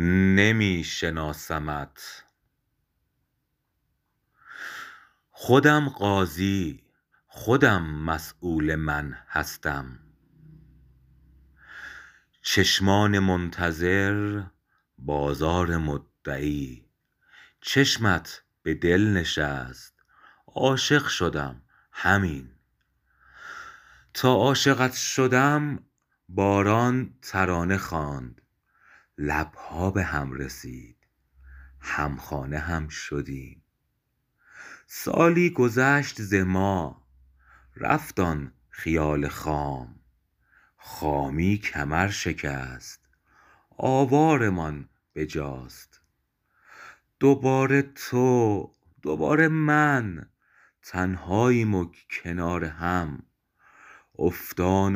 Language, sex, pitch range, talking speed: Persian, male, 75-110 Hz, 60 wpm